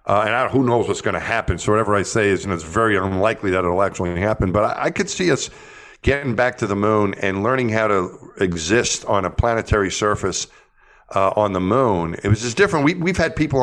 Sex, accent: male, American